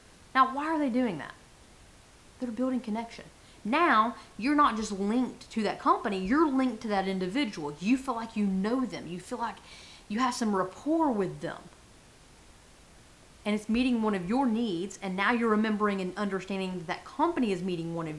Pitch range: 195-260 Hz